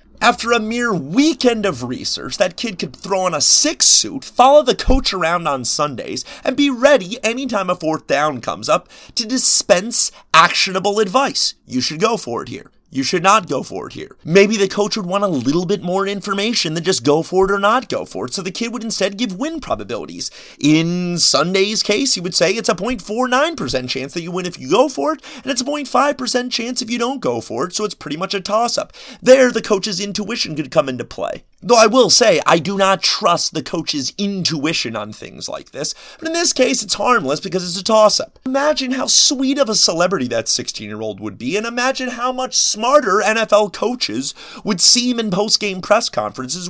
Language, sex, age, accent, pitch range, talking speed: English, male, 30-49, American, 175-255 Hz, 210 wpm